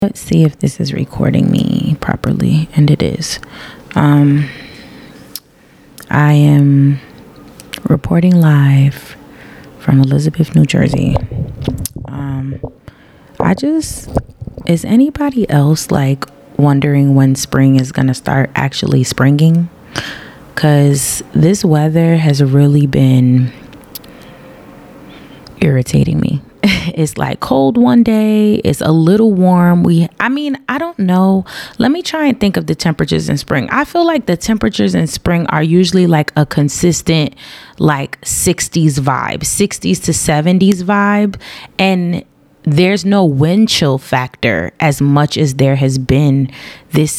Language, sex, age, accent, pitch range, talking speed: English, female, 20-39, American, 140-180 Hz, 125 wpm